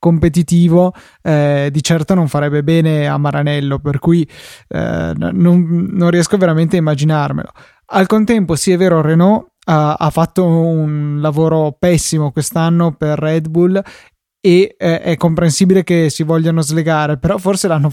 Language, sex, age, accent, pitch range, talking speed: Italian, male, 20-39, native, 150-170 Hz, 150 wpm